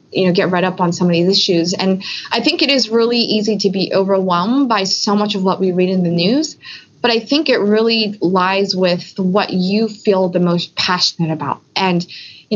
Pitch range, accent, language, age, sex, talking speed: 180-210 Hz, American, English, 20-39, female, 220 wpm